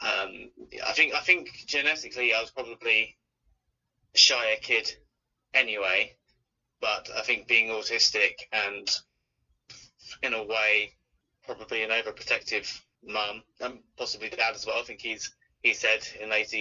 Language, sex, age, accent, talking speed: English, male, 20-39, British, 135 wpm